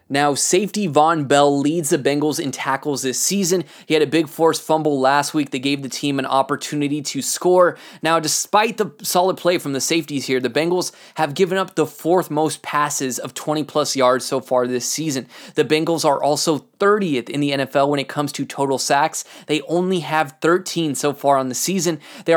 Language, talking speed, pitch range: English, 205 wpm, 140-170 Hz